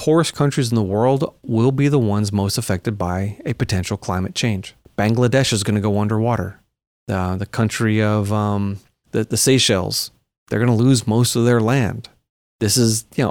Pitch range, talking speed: 105-135 Hz, 185 wpm